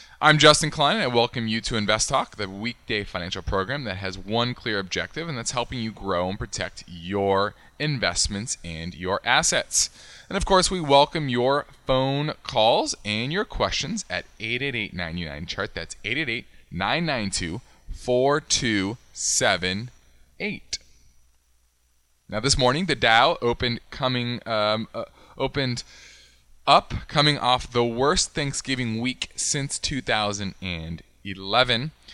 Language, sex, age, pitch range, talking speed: English, male, 20-39, 95-135 Hz, 125 wpm